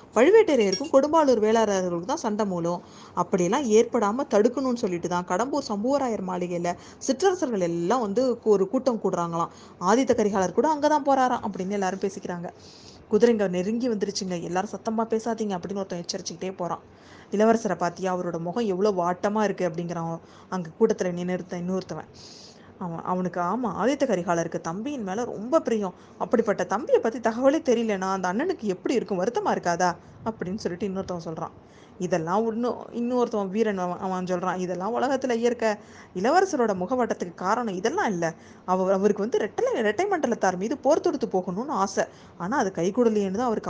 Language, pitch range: Tamil, 180-235 Hz